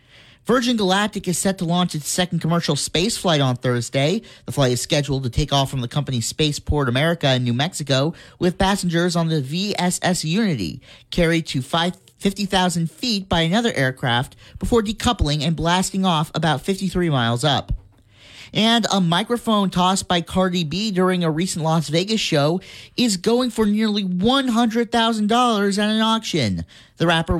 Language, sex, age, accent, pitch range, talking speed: English, male, 40-59, American, 150-195 Hz, 160 wpm